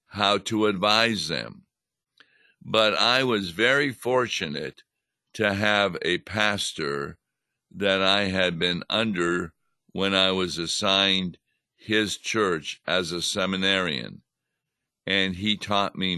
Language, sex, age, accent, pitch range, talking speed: English, male, 60-79, American, 95-110 Hz, 115 wpm